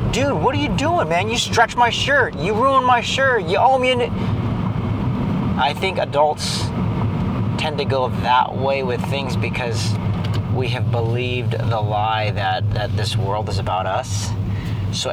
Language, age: English, 40-59